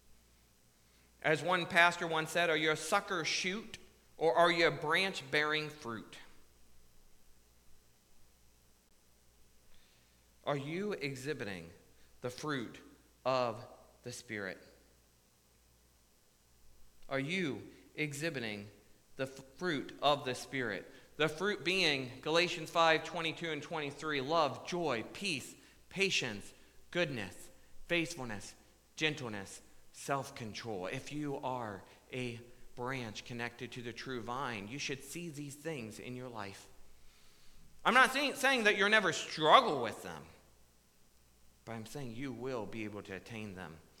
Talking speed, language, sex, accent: 115 wpm, English, male, American